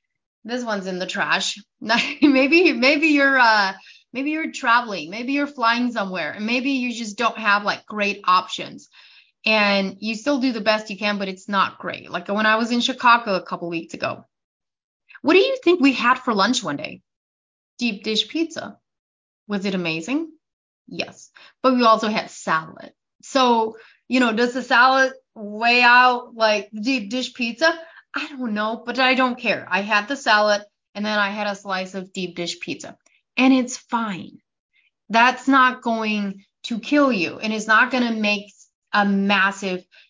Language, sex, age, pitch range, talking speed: English, female, 30-49, 205-255 Hz, 180 wpm